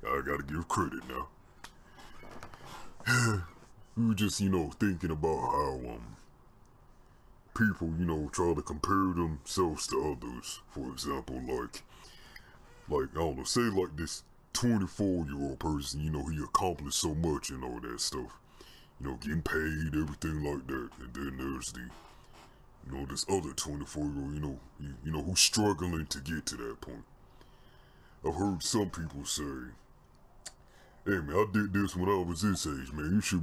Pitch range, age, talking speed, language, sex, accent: 75-95 Hz, 40-59, 165 wpm, English, female, American